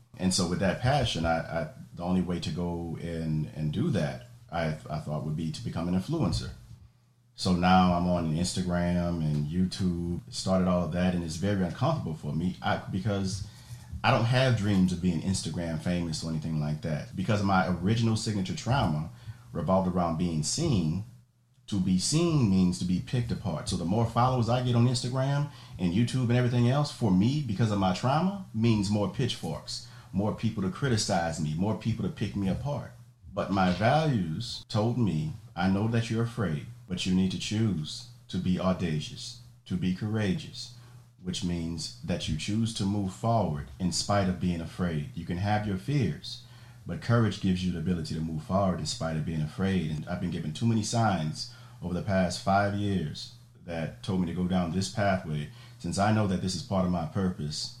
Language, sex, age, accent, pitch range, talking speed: English, male, 40-59, American, 90-120 Hz, 195 wpm